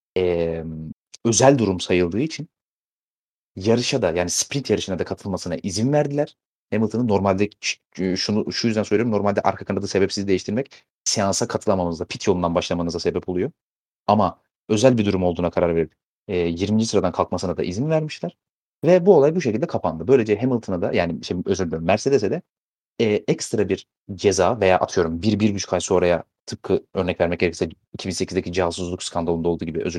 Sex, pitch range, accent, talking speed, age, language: male, 90-115 Hz, native, 160 wpm, 30-49, Turkish